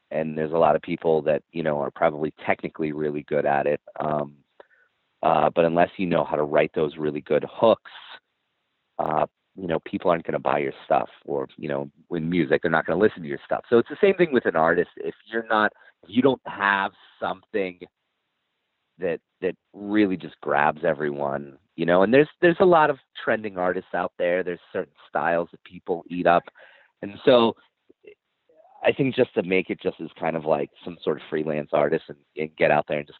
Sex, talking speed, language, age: male, 215 wpm, English, 30-49